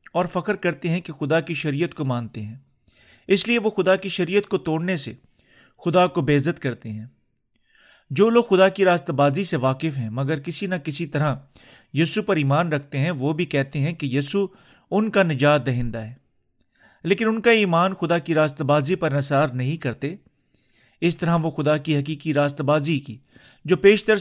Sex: male